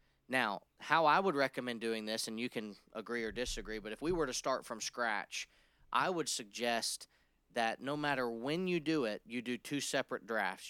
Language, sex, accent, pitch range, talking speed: English, male, American, 115-140 Hz, 200 wpm